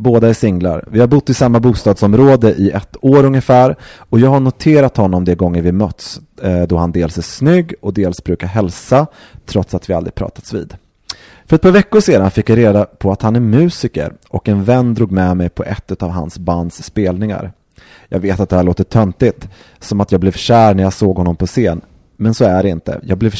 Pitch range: 90-115 Hz